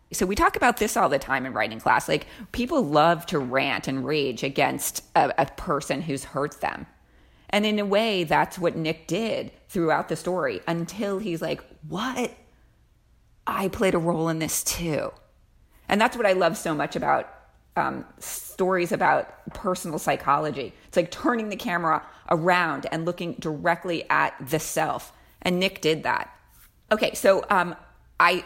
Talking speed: 170 wpm